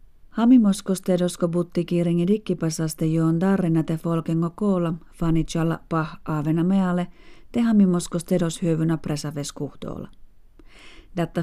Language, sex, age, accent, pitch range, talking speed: Finnish, female, 40-59, native, 160-185 Hz, 95 wpm